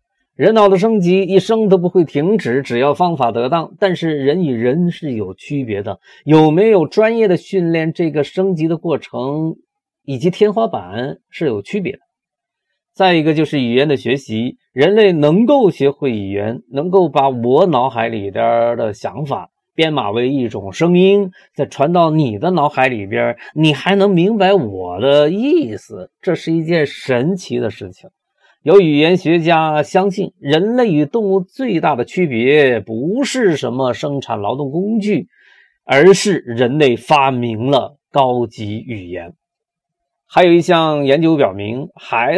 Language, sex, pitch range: Chinese, male, 125-185 Hz